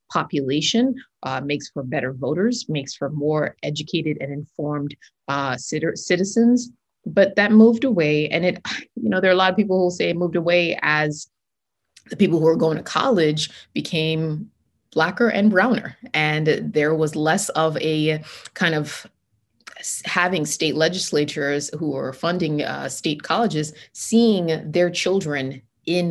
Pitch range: 150-185 Hz